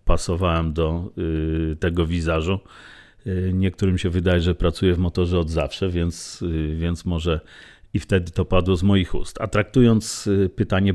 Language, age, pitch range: Polish, 40-59, 85-100 Hz